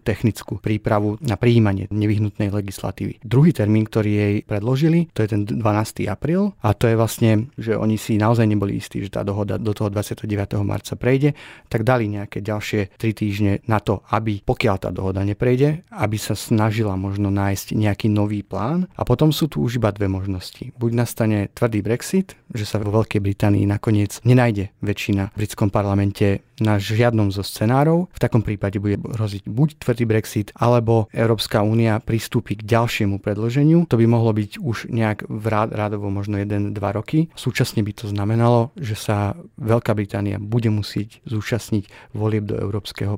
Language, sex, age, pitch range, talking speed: Slovak, male, 30-49, 105-115 Hz, 170 wpm